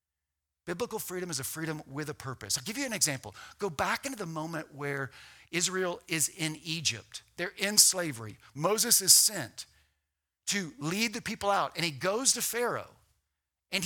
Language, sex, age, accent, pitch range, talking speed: English, male, 50-69, American, 125-205 Hz, 175 wpm